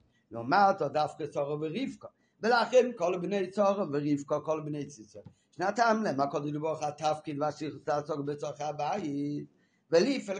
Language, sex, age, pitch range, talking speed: Hebrew, male, 50-69, 150-205 Hz, 140 wpm